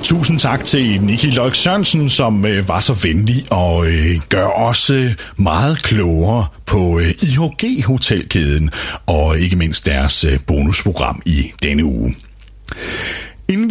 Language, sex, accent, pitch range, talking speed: Danish, male, native, 85-130 Hz, 115 wpm